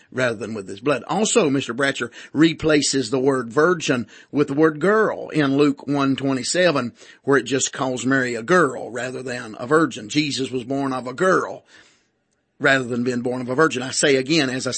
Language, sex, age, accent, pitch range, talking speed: English, male, 50-69, American, 135-180 Hz, 205 wpm